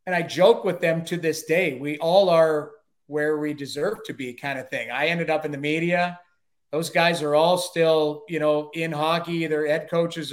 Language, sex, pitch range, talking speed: English, male, 150-190 Hz, 210 wpm